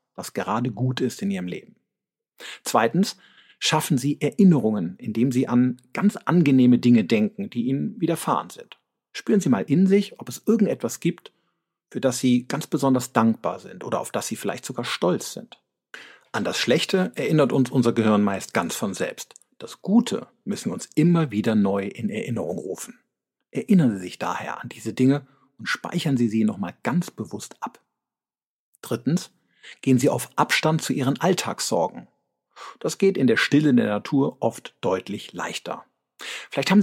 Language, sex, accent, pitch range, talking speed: German, male, German, 120-185 Hz, 170 wpm